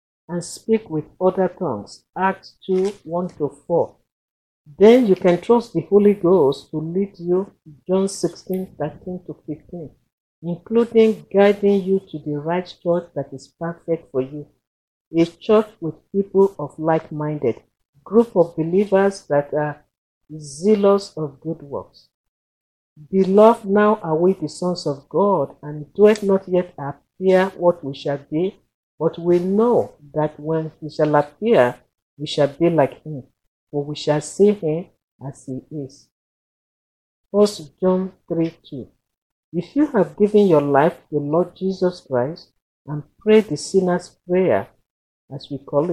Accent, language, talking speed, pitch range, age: Nigerian, English, 150 wpm, 150-195 Hz, 50-69